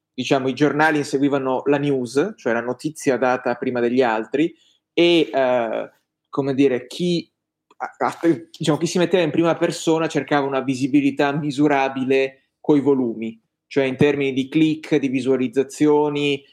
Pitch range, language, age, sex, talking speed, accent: 135-155 Hz, Italian, 20-39, male, 140 wpm, native